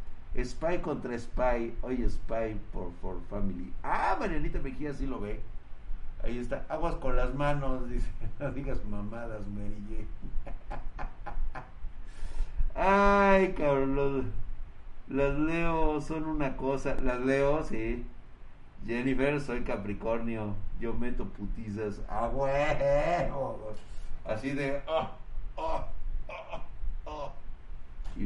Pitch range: 115-150 Hz